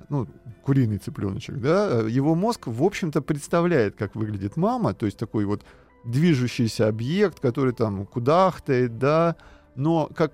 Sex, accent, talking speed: male, native, 140 wpm